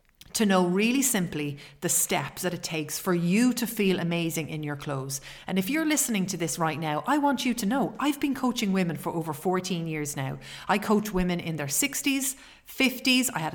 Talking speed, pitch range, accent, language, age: 215 wpm, 160-205 Hz, Irish, English, 30-49